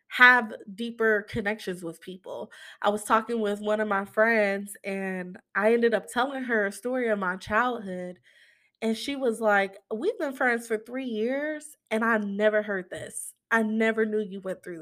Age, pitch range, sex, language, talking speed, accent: 20-39, 205-260 Hz, female, English, 180 wpm, American